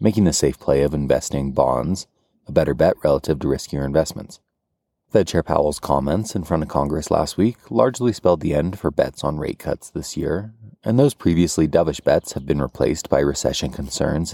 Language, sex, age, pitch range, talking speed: English, male, 30-49, 70-90 Hz, 195 wpm